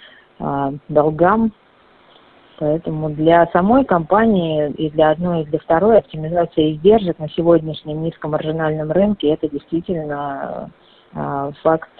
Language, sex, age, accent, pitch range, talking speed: Russian, female, 30-49, native, 155-190 Hz, 110 wpm